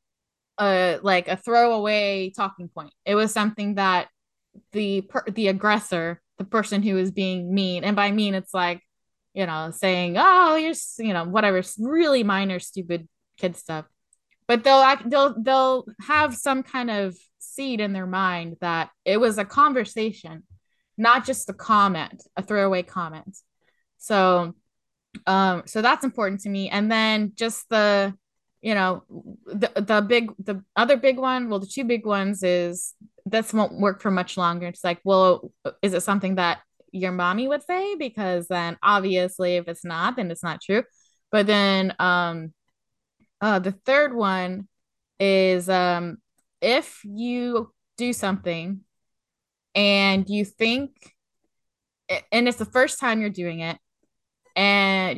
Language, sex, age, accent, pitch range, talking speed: English, female, 10-29, American, 180-225 Hz, 155 wpm